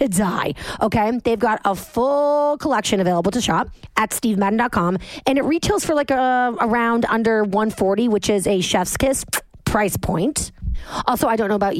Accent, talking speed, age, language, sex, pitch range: American, 170 wpm, 30-49, English, female, 190-255 Hz